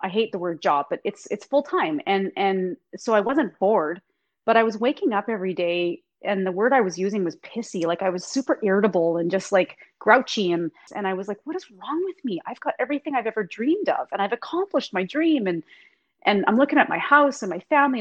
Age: 30-49